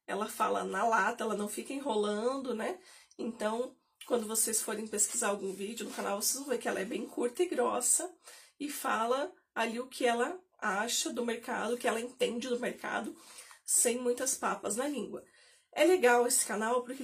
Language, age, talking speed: Portuguese, 30-49, 185 wpm